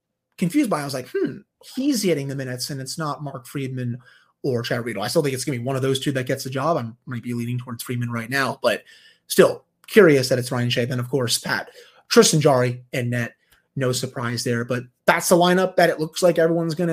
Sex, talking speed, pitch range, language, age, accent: male, 250 wpm, 125-170 Hz, English, 30-49, American